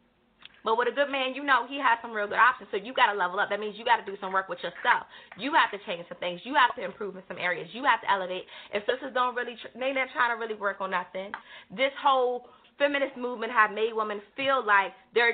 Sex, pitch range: female, 200-255 Hz